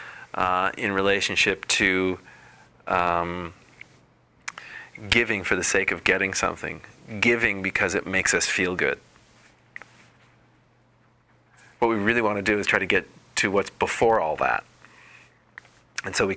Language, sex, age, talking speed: English, male, 30-49, 135 wpm